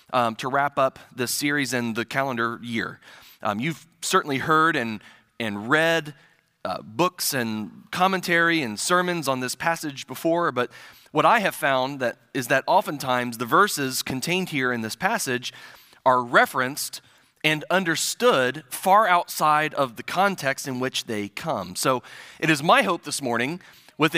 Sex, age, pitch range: male, 30-49, 125-170 Hz